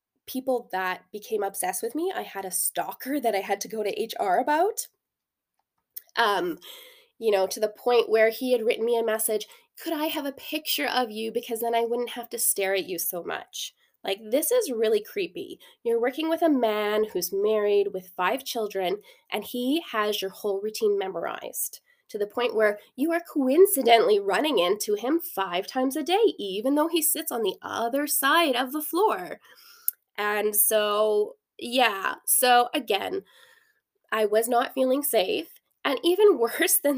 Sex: female